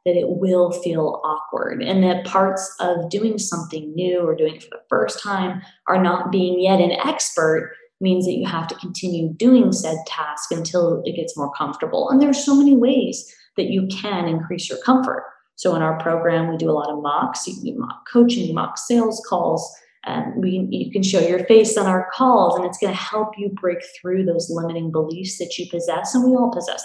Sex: female